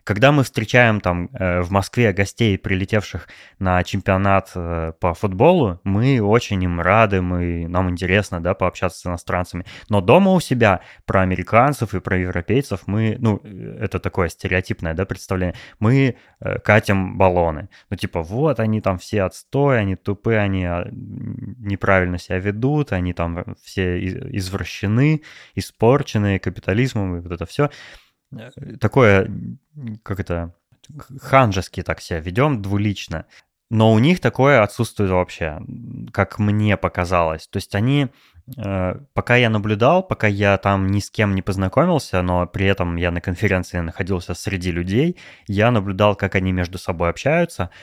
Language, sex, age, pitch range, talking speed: Russian, male, 20-39, 90-115 Hz, 140 wpm